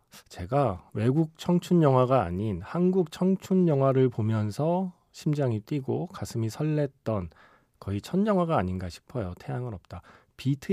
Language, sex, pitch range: Korean, male, 105-145 Hz